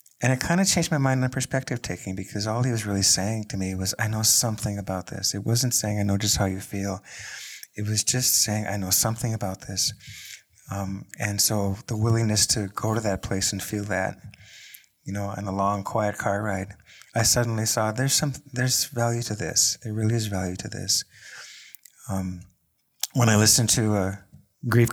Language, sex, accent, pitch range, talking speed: English, male, American, 95-115 Hz, 205 wpm